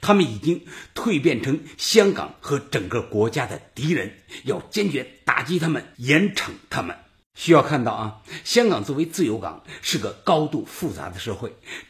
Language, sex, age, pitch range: Chinese, male, 60-79, 115-180 Hz